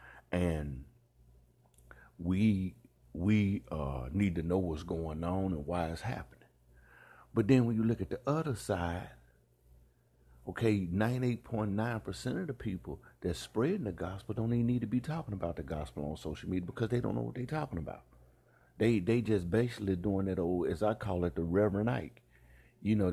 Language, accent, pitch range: English, American, 70-115 Hz